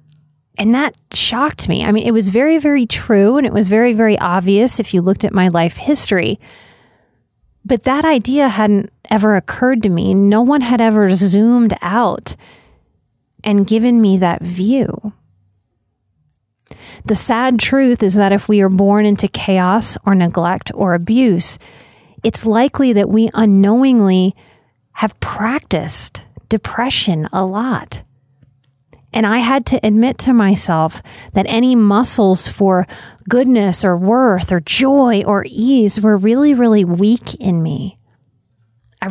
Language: English